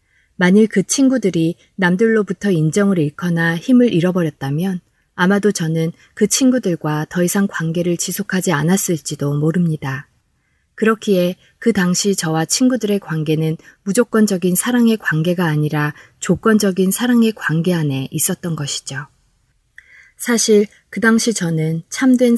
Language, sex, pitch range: Korean, female, 155-205 Hz